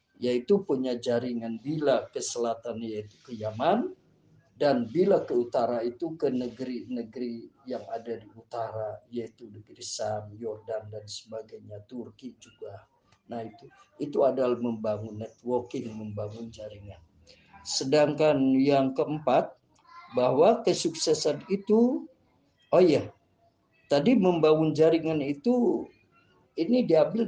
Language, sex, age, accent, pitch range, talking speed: Indonesian, male, 50-69, native, 115-155 Hz, 110 wpm